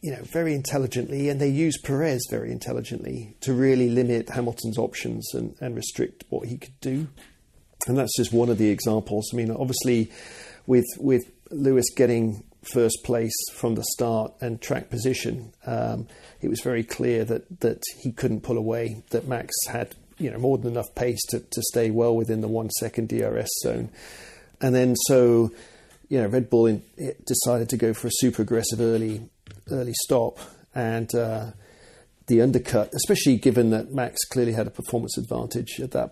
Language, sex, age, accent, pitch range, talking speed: English, male, 40-59, British, 115-135 Hz, 180 wpm